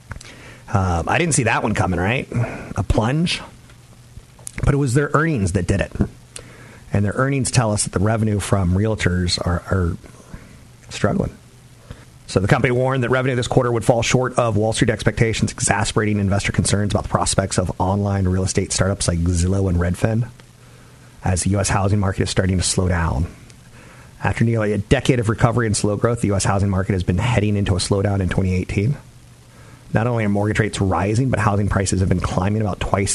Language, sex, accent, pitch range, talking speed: English, male, American, 95-115 Hz, 190 wpm